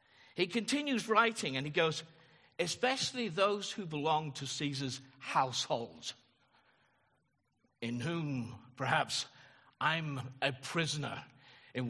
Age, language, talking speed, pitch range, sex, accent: 50-69, English, 100 wpm, 135-230 Hz, male, British